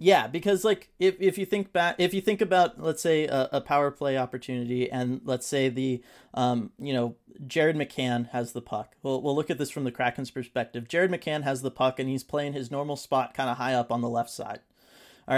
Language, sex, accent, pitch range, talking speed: English, male, American, 125-155 Hz, 235 wpm